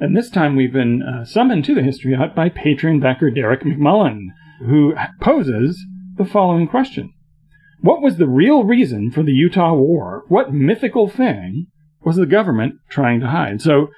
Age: 40-59